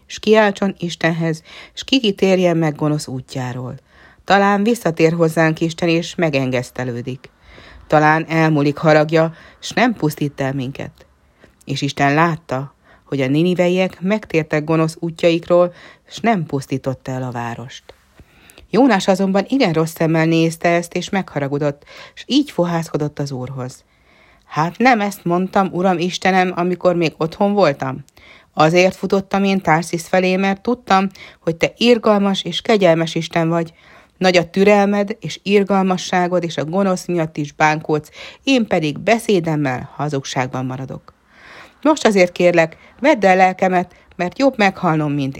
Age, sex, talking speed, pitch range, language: 30-49, female, 135 wpm, 150-190 Hz, Hungarian